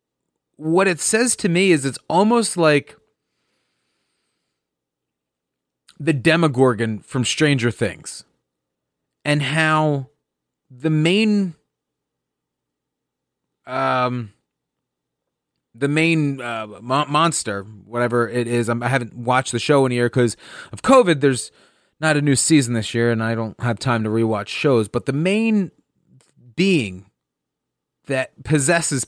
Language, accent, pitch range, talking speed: English, American, 120-165 Hz, 125 wpm